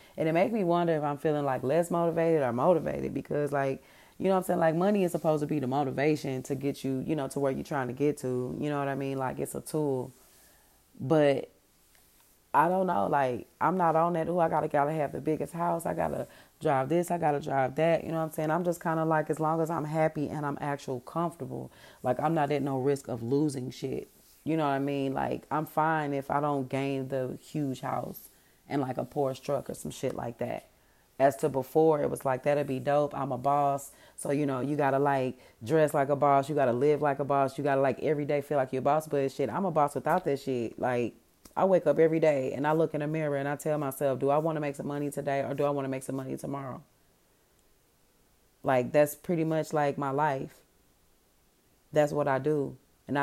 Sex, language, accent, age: female, English, American, 30-49